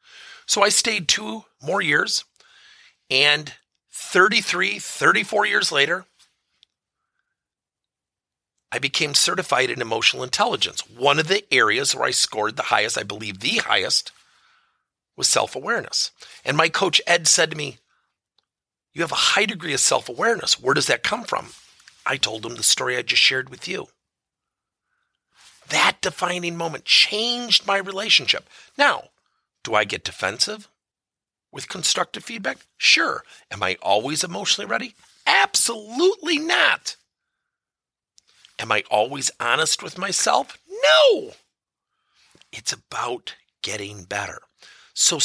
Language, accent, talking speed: English, American, 125 wpm